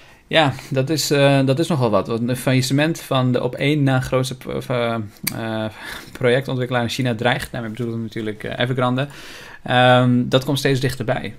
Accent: Dutch